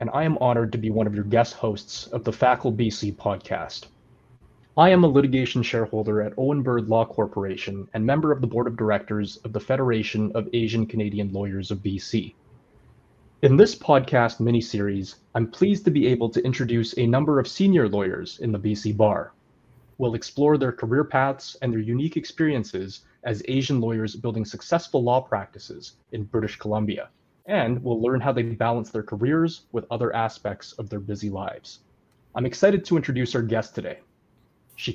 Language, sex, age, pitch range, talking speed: English, male, 20-39, 110-135 Hz, 180 wpm